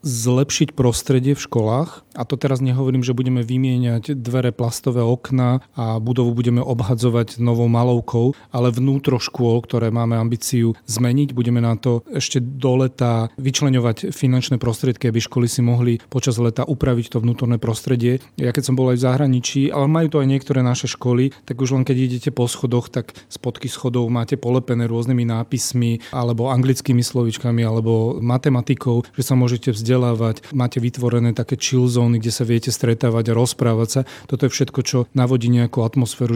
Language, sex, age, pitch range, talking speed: Slovak, male, 30-49, 120-130 Hz, 170 wpm